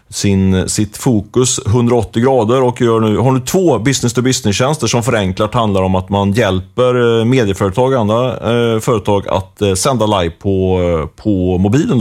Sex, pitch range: male, 105-130 Hz